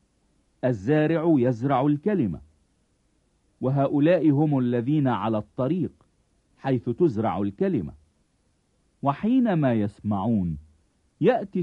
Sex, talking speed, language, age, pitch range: male, 70 wpm, English, 50-69, 100-150 Hz